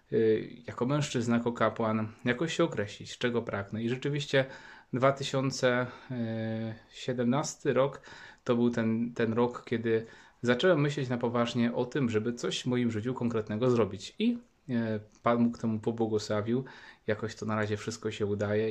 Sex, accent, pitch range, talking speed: male, native, 110-125 Hz, 140 wpm